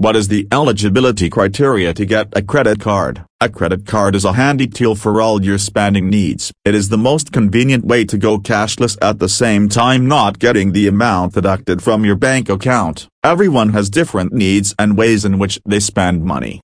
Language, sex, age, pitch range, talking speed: English, male, 40-59, 95-110 Hz, 200 wpm